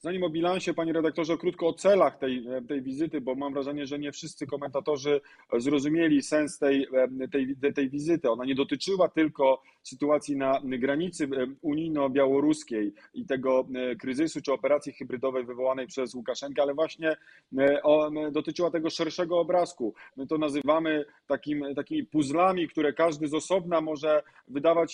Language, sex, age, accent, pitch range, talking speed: Polish, male, 30-49, native, 135-160 Hz, 145 wpm